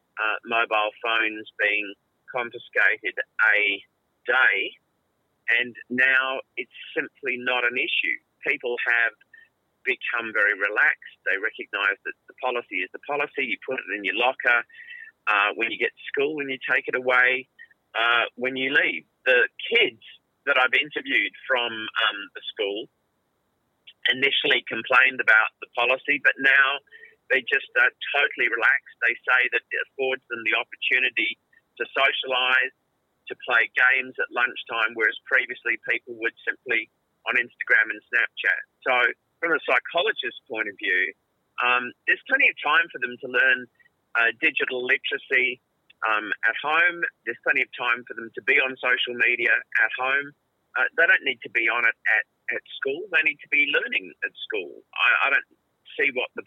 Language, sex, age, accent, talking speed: English, male, 40-59, Australian, 160 wpm